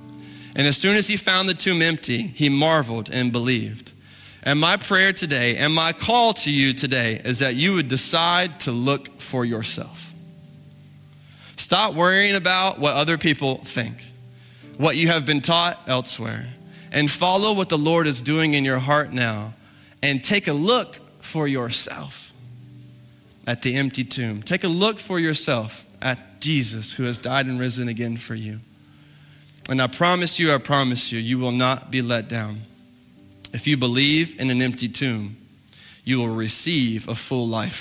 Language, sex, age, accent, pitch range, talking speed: English, male, 20-39, American, 125-155 Hz, 170 wpm